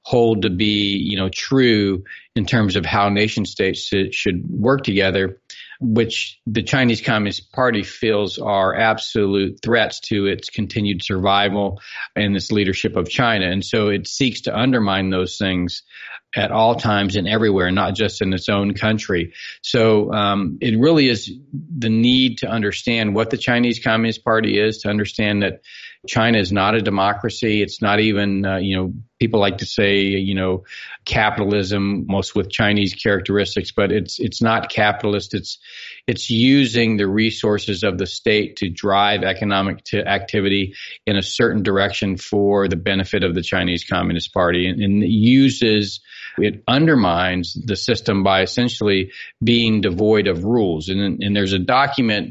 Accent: American